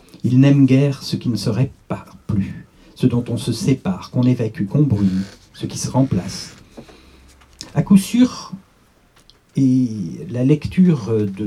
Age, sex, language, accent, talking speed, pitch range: 50-69, male, French, French, 145 wpm, 110-160 Hz